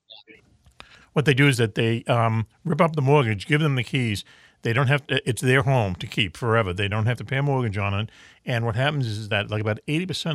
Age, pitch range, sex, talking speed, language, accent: 50-69, 105-135 Hz, male, 250 wpm, English, American